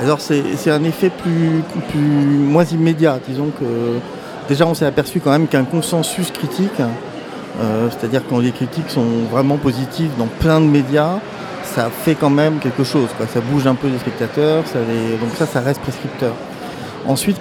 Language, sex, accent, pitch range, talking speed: French, male, French, 120-155 Hz, 190 wpm